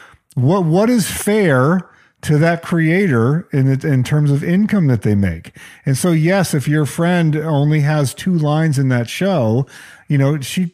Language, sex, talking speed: English, male, 180 wpm